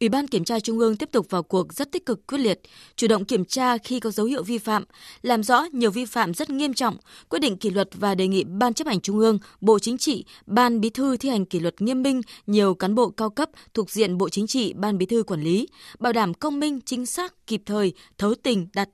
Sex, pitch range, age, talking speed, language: female, 200-255 Hz, 20-39, 265 wpm, Vietnamese